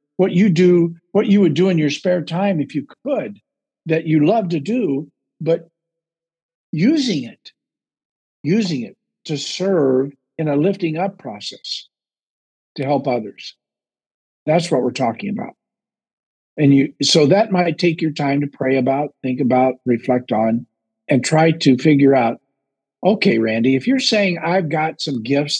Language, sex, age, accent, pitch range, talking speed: English, male, 50-69, American, 135-195 Hz, 160 wpm